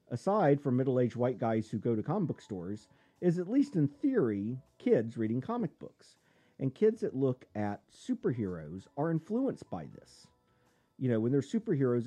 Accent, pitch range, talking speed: American, 105-155 Hz, 175 wpm